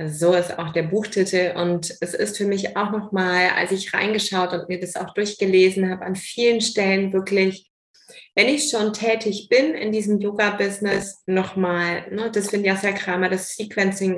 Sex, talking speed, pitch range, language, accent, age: female, 175 wpm, 195-230 Hz, German, German, 20-39